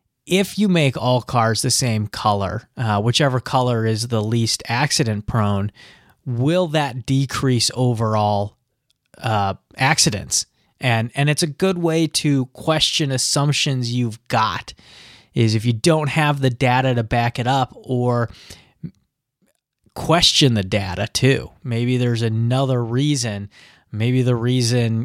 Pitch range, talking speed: 115-145 Hz, 130 wpm